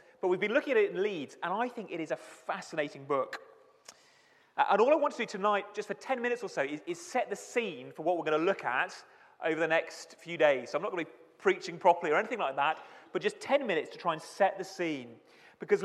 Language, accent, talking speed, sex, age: English, British, 265 wpm, male, 30-49